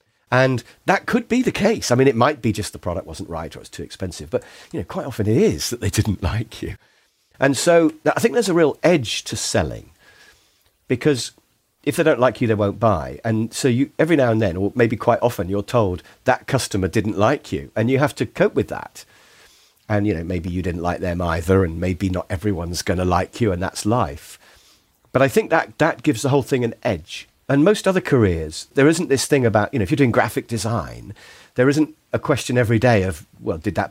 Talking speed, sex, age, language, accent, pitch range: 235 wpm, male, 50-69, English, British, 100-140 Hz